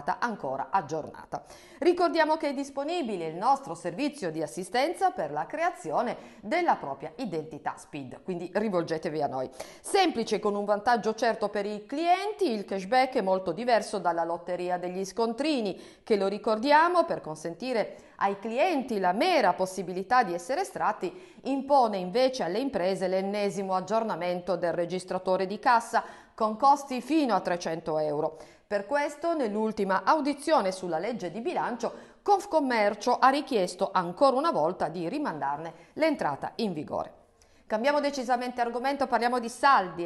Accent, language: native, Italian